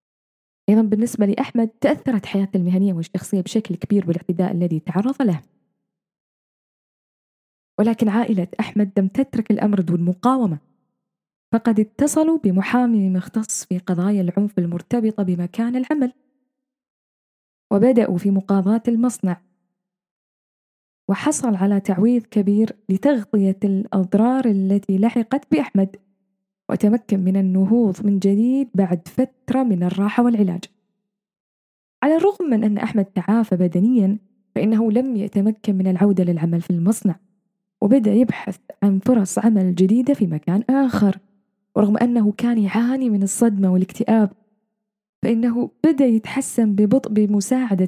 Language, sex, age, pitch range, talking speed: Arabic, female, 10-29, 190-235 Hz, 115 wpm